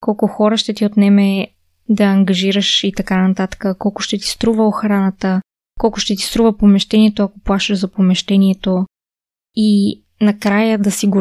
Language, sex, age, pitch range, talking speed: Bulgarian, female, 20-39, 200-240 Hz, 155 wpm